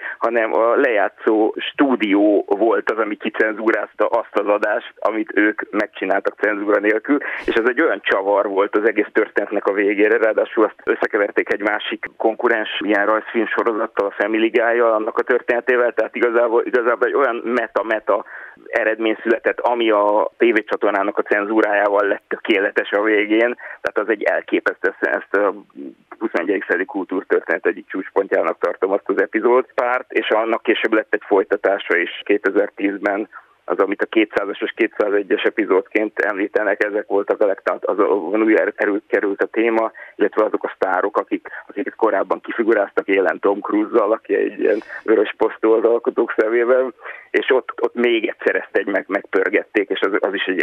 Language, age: Hungarian, 30-49